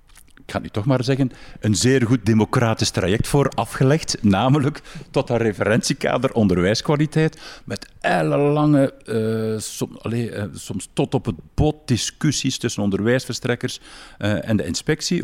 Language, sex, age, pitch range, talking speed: Dutch, male, 50-69, 100-150 Hz, 140 wpm